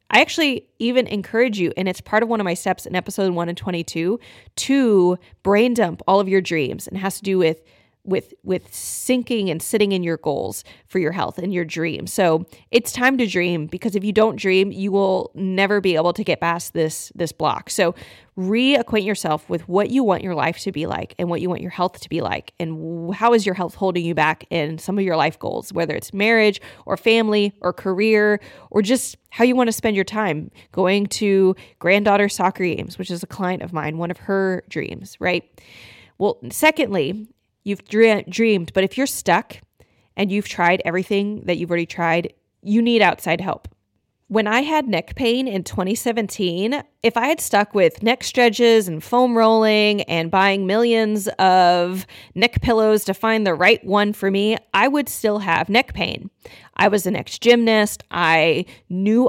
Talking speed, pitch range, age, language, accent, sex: 195 wpm, 180-225 Hz, 20-39, English, American, female